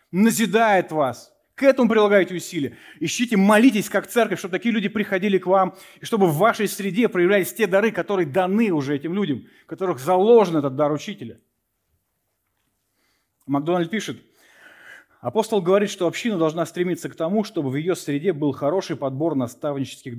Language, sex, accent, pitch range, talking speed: Russian, male, native, 130-190 Hz, 155 wpm